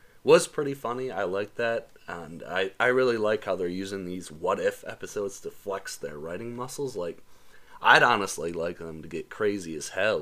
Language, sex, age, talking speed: English, male, 30-49, 190 wpm